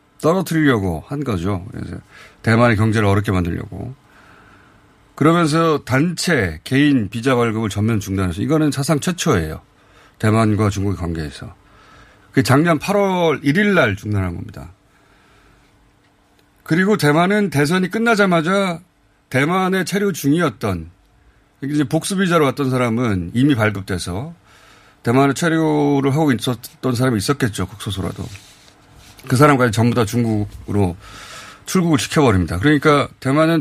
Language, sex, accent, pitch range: Korean, male, native, 105-155 Hz